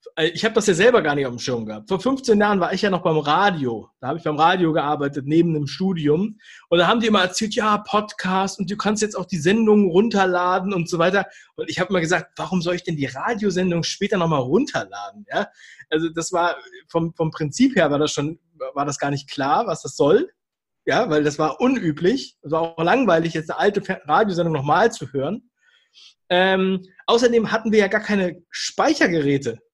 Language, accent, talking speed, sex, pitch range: German, German, 210 wpm, male, 155-205 Hz